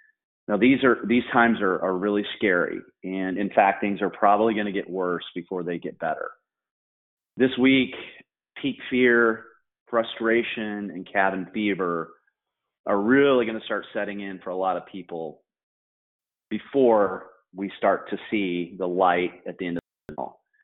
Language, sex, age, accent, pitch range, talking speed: English, male, 30-49, American, 95-115 Hz, 165 wpm